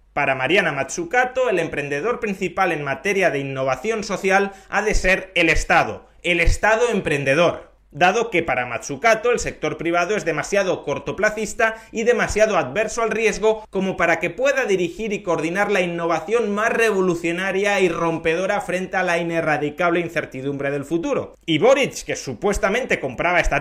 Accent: Spanish